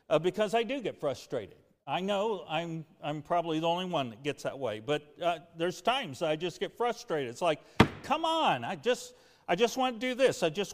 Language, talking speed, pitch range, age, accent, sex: English, 225 wpm, 160-205 Hz, 50-69, American, male